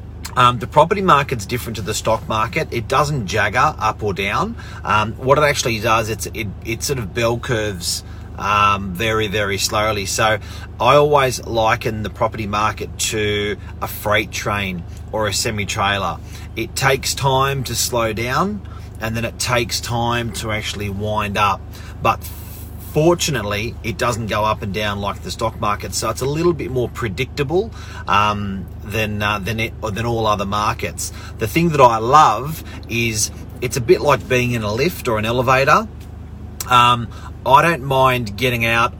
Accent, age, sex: Australian, 30-49, male